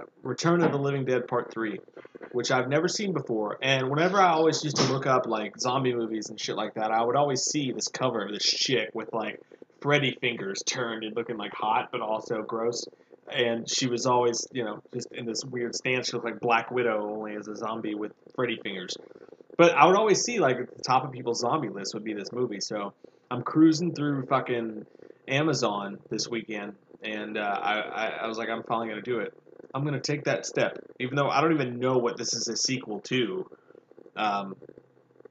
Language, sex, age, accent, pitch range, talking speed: English, male, 20-39, American, 115-145 Hz, 220 wpm